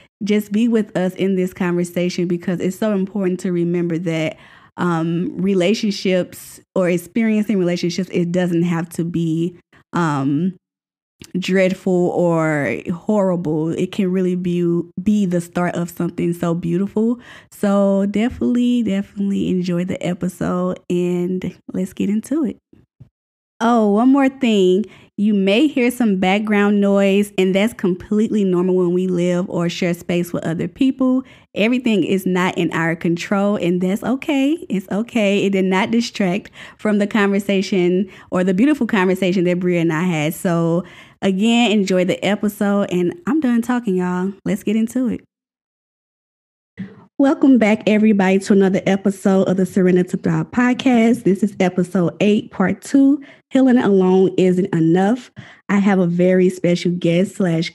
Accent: American